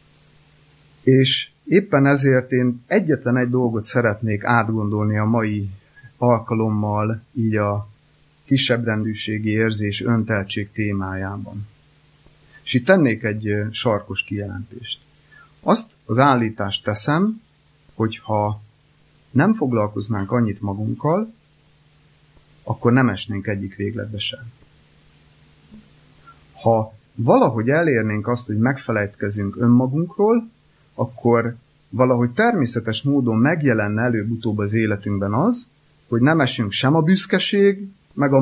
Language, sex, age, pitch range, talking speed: Hungarian, male, 30-49, 110-150 Hz, 100 wpm